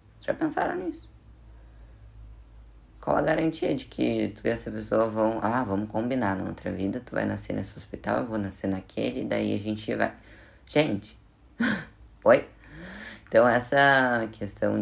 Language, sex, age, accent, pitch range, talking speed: Portuguese, female, 10-29, Brazilian, 100-110 Hz, 150 wpm